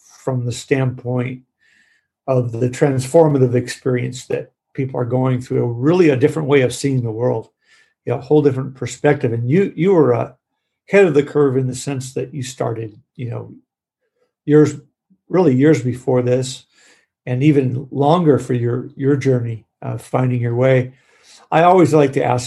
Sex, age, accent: male, 50-69, American